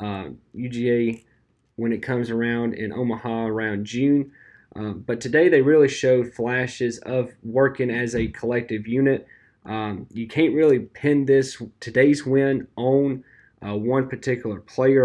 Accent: American